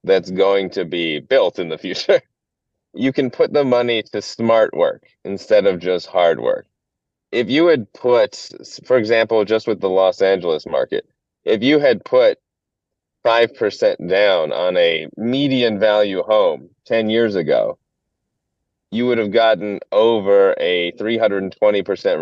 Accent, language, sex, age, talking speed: American, English, male, 30-49, 145 wpm